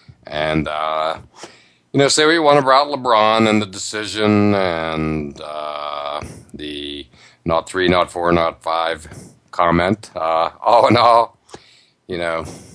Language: English